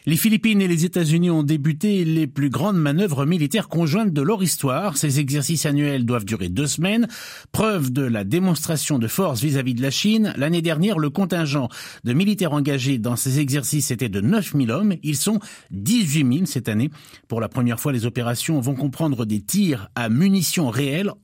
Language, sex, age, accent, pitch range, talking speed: French, male, 50-69, French, 125-170 Hz, 190 wpm